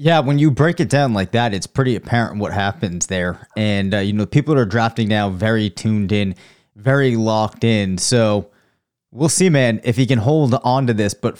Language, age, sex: English, 30-49, male